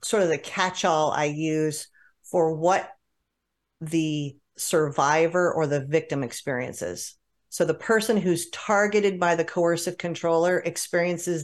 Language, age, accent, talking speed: English, 40-59, American, 125 wpm